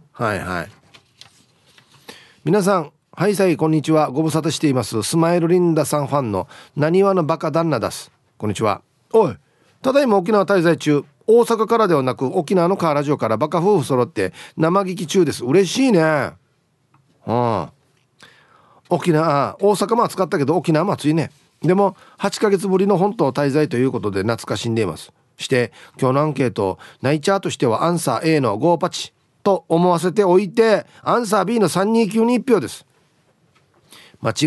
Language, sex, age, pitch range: Japanese, male, 40-59, 130-180 Hz